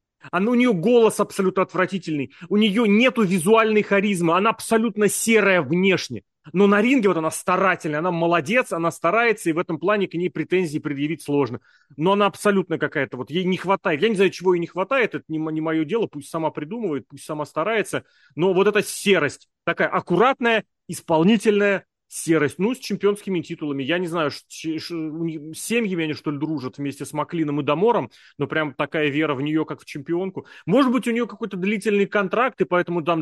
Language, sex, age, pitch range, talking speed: Russian, male, 30-49, 155-200 Hz, 190 wpm